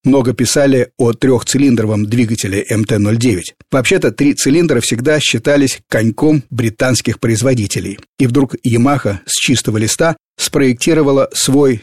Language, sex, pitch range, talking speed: Russian, male, 115-145 Hz, 110 wpm